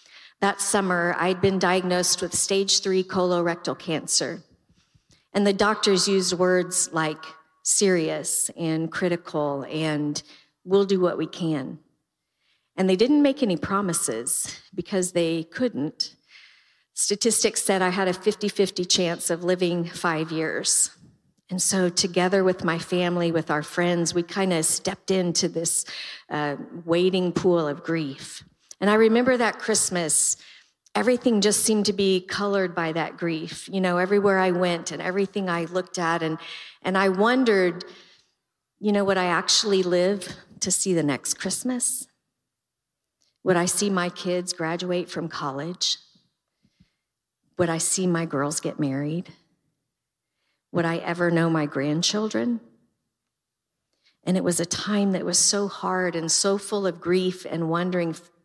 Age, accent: 50-69, American